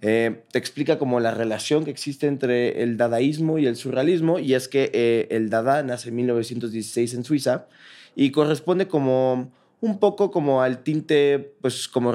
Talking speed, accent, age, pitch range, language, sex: 175 wpm, Mexican, 20-39, 110-135 Hz, Spanish, male